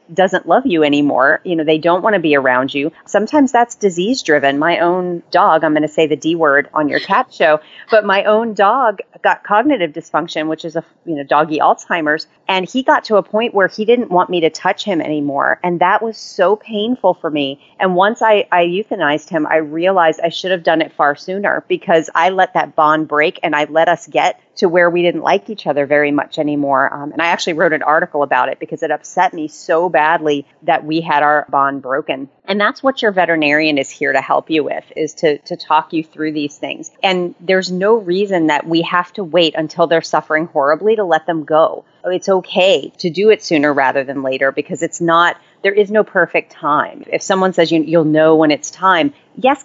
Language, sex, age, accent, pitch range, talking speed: English, female, 30-49, American, 155-200 Hz, 225 wpm